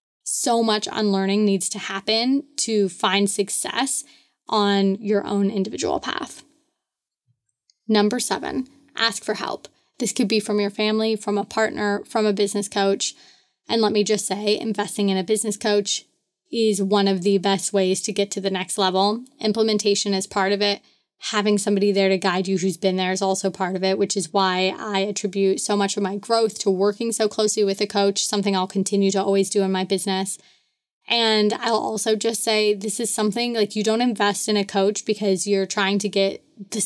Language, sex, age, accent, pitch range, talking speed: English, female, 20-39, American, 195-220 Hz, 195 wpm